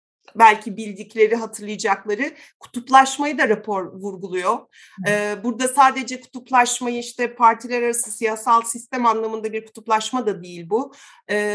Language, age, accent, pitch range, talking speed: Turkish, 40-59, native, 215-250 Hz, 120 wpm